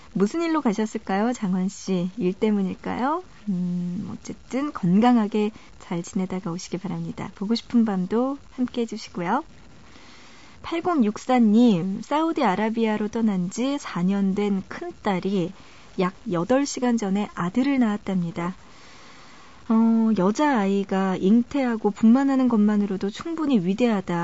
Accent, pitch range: native, 190-235 Hz